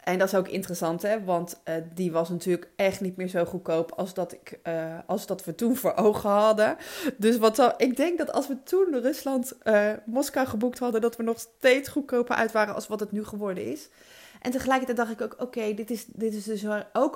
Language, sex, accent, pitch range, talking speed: Dutch, female, Dutch, 190-245 Hz, 230 wpm